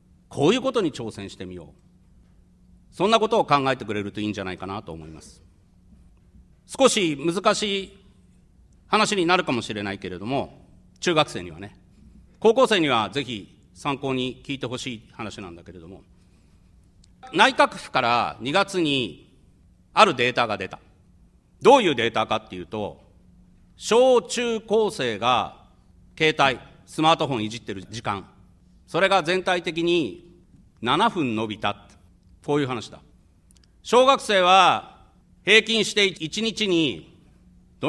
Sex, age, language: male, 40-59, Japanese